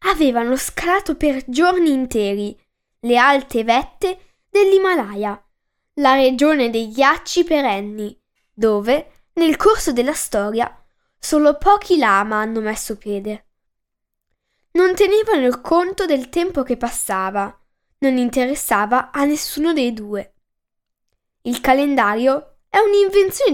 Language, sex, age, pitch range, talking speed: Italian, female, 10-29, 220-315 Hz, 110 wpm